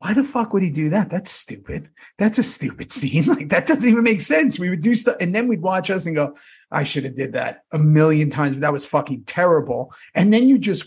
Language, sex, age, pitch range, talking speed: English, male, 30-49, 145-205 Hz, 260 wpm